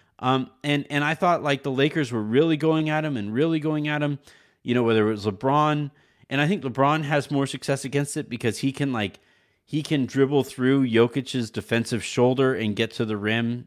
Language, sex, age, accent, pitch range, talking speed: English, male, 30-49, American, 115-140 Hz, 215 wpm